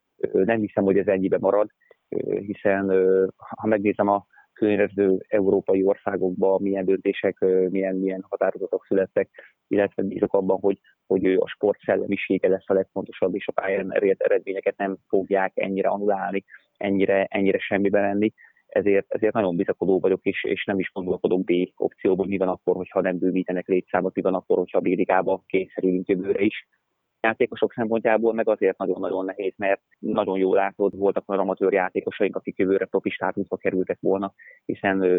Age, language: 30-49, Hungarian